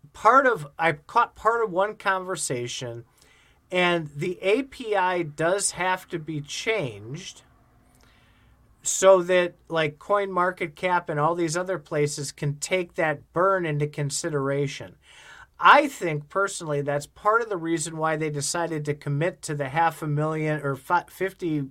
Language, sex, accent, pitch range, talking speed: English, male, American, 150-185 Hz, 145 wpm